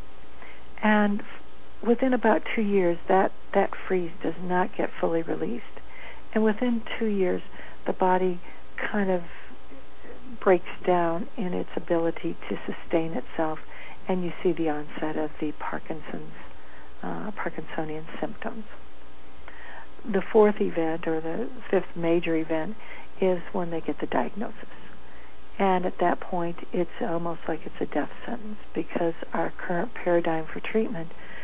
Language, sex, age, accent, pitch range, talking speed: English, female, 60-79, American, 155-195 Hz, 135 wpm